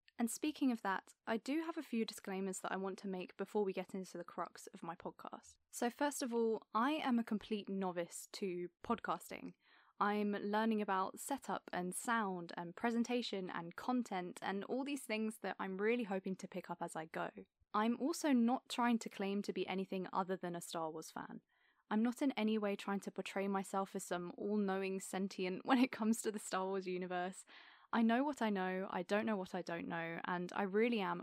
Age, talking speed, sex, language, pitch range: 20-39, 215 wpm, female, English, 185-220 Hz